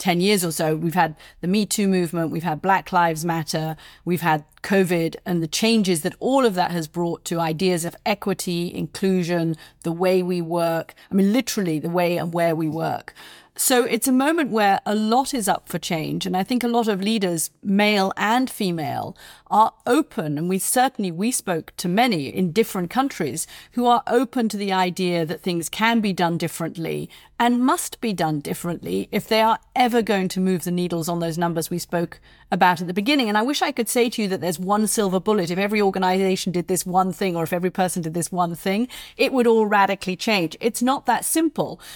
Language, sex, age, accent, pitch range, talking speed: English, female, 40-59, British, 175-225 Hz, 215 wpm